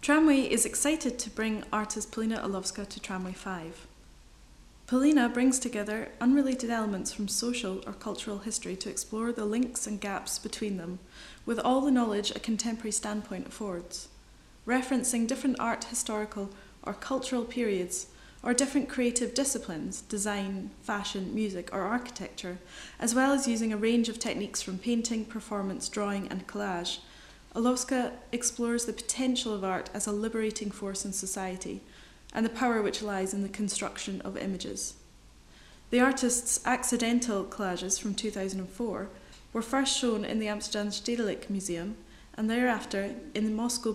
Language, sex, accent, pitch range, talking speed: English, female, British, 200-240 Hz, 145 wpm